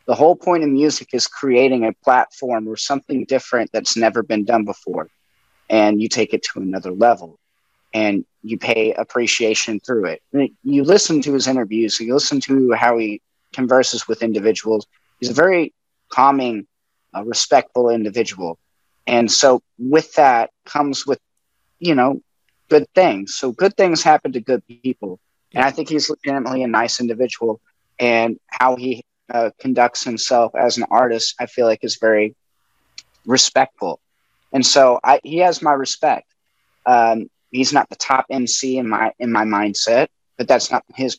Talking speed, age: 165 wpm, 30-49